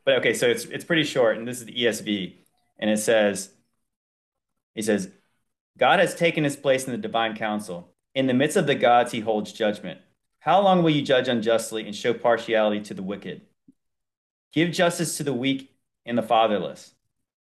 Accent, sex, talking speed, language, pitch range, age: American, male, 190 wpm, English, 110-150 Hz, 30-49